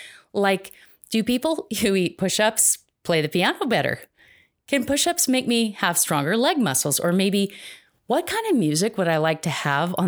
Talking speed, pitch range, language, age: 180 wpm, 160-225 Hz, English, 30-49